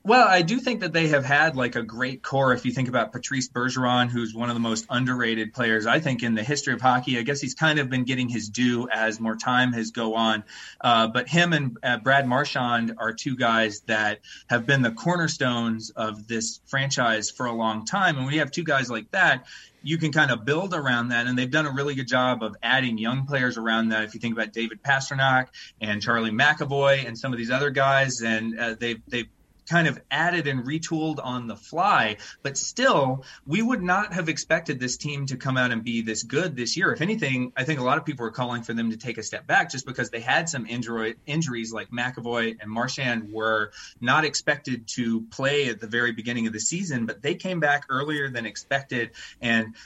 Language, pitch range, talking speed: English, 115-140 Hz, 230 wpm